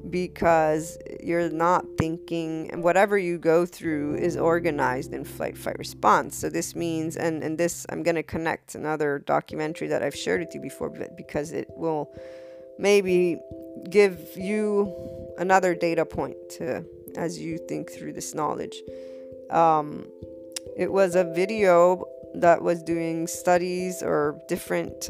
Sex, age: female, 20-39